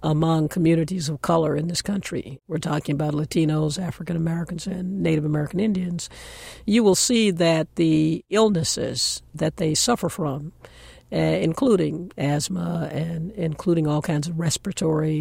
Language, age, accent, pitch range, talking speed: English, 60-79, American, 155-180 Hz, 140 wpm